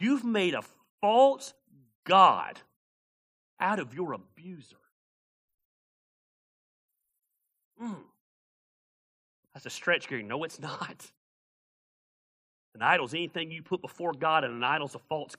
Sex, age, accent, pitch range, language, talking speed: male, 40-59, American, 125-185 Hz, English, 120 wpm